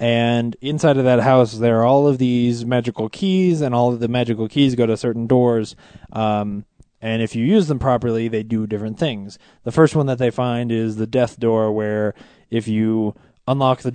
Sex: male